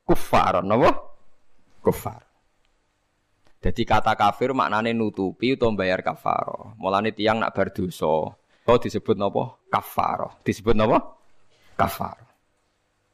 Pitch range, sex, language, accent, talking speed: 105-150 Hz, male, Indonesian, native, 105 wpm